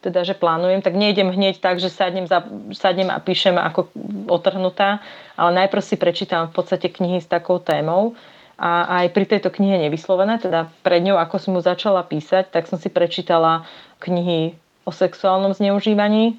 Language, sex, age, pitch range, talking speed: Slovak, female, 30-49, 170-190 Hz, 175 wpm